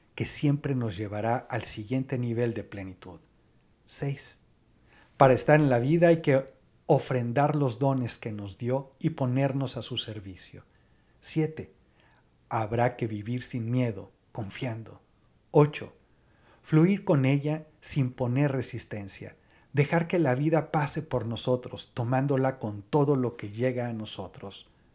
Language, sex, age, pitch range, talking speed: Spanish, male, 40-59, 110-140 Hz, 135 wpm